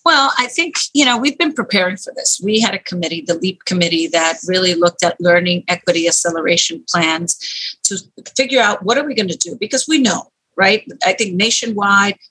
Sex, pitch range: female, 180-230 Hz